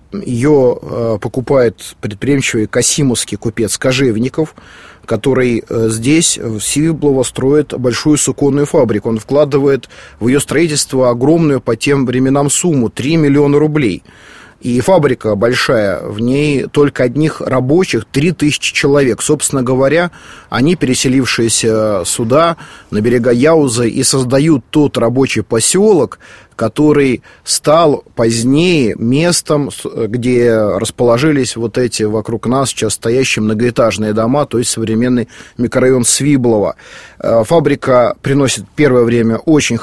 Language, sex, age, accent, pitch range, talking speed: Russian, male, 30-49, native, 120-145 Hz, 115 wpm